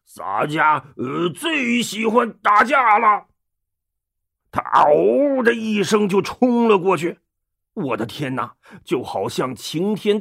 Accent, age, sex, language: native, 40-59, male, Chinese